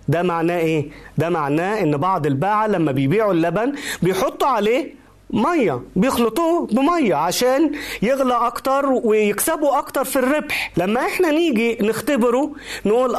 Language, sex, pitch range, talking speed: Arabic, male, 205-290 Hz, 125 wpm